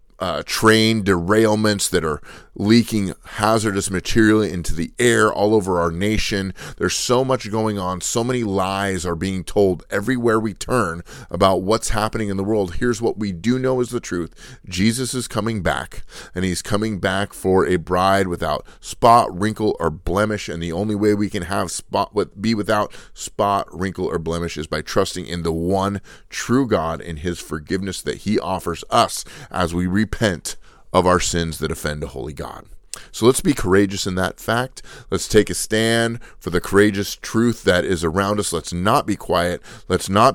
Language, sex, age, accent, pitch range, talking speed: English, male, 30-49, American, 85-110 Hz, 185 wpm